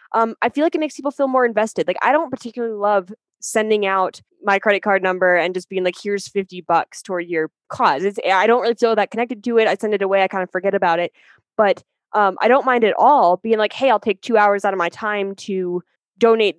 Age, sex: 10-29, female